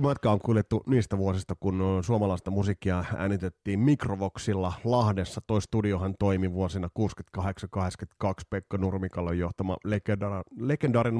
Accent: native